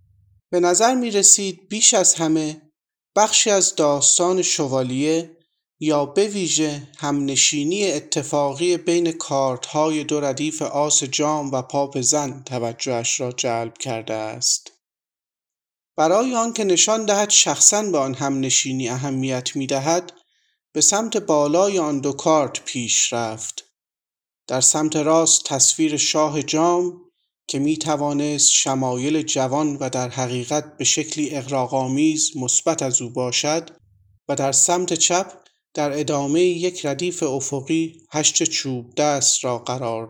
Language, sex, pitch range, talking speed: Persian, male, 135-175 Hz, 125 wpm